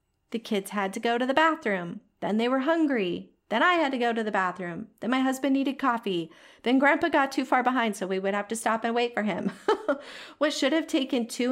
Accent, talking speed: American, 240 wpm